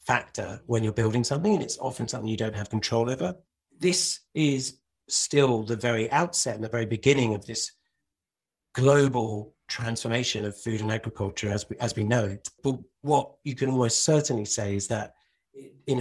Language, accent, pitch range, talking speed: English, British, 110-135 Hz, 180 wpm